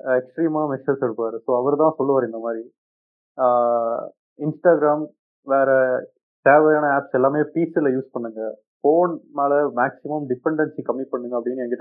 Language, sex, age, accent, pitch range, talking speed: Tamil, male, 30-49, native, 125-150 Hz, 120 wpm